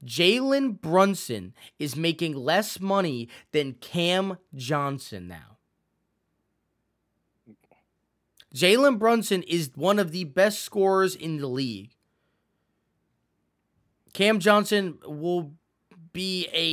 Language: English